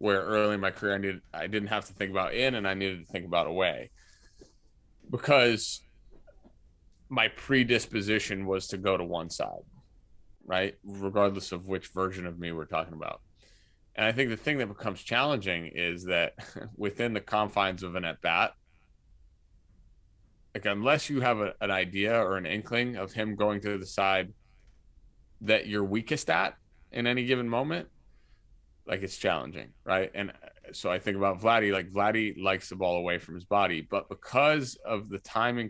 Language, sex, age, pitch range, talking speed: English, male, 30-49, 90-110 Hz, 175 wpm